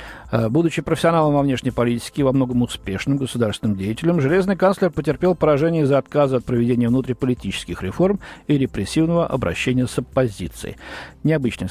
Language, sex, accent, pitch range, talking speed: Russian, male, native, 115-160 Hz, 140 wpm